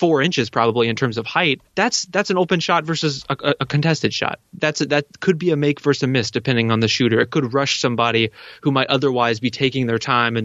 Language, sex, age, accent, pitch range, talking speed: English, male, 20-39, American, 120-145 Hz, 245 wpm